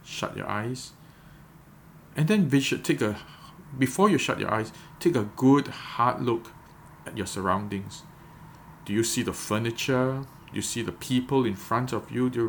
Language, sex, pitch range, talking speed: English, male, 110-155 Hz, 170 wpm